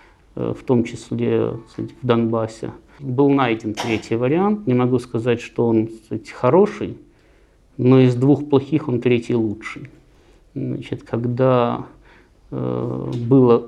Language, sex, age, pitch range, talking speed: Russian, male, 50-69, 110-125 Hz, 105 wpm